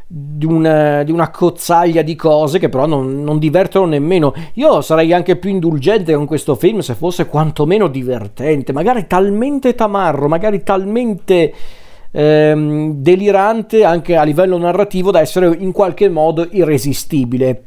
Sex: male